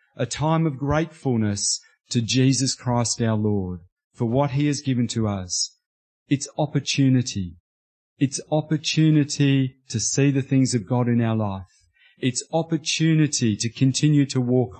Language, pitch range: English, 115-145 Hz